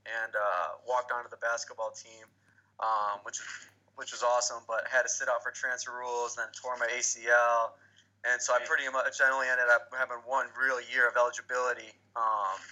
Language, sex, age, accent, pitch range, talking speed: English, male, 20-39, American, 115-125 Hz, 190 wpm